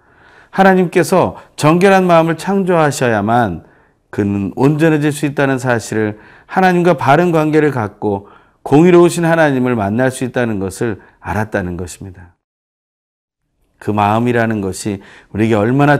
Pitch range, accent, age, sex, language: 105-150 Hz, native, 40-59, male, Korean